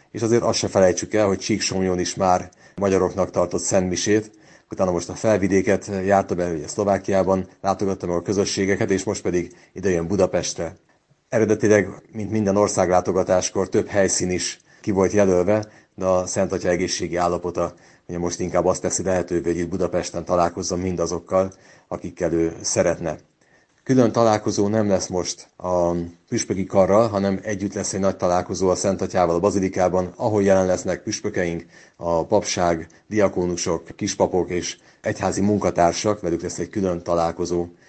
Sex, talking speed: male, 145 wpm